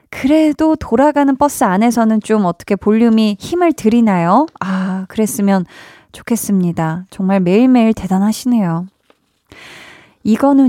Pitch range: 190-255 Hz